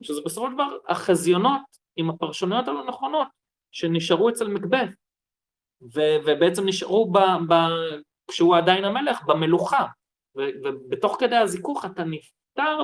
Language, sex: Hebrew, male